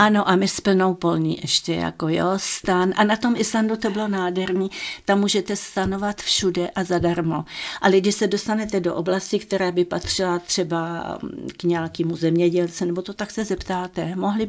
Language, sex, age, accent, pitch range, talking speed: Czech, female, 50-69, native, 175-200 Hz, 170 wpm